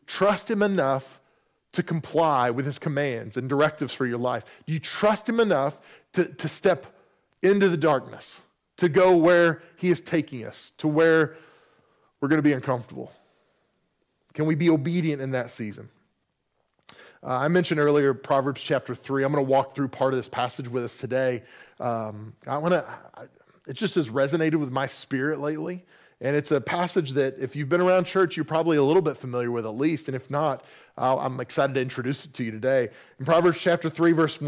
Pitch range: 135-175 Hz